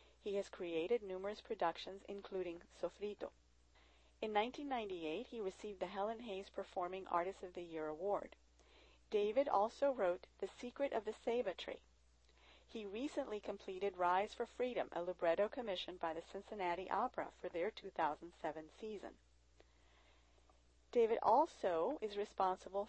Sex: female